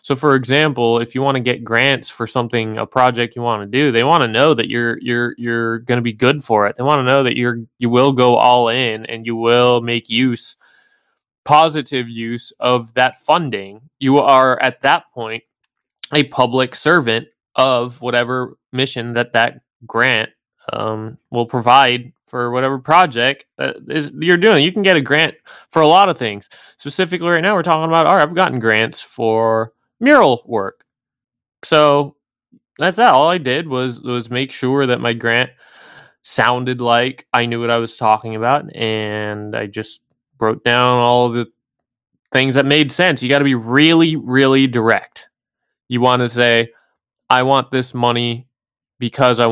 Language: English